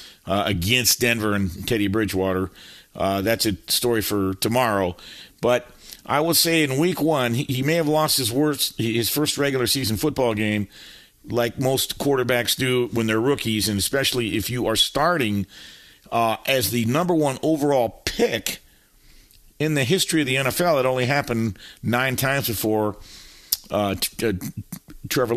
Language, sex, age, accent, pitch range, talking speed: English, male, 50-69, American, 105-130 Hz, 160 wpm